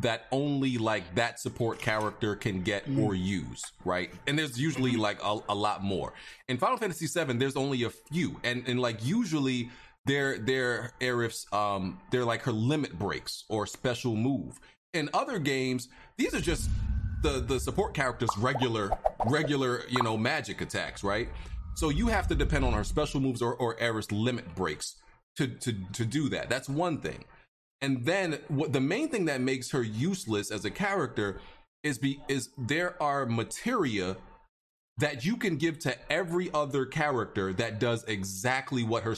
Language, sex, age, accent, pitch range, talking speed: English, male, 30-49, American, 115-150 Hz, 175 wpm